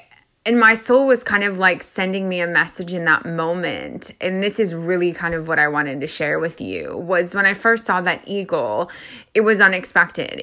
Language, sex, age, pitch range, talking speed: English, female, 20-39, 170-220 Hz, 215 wpm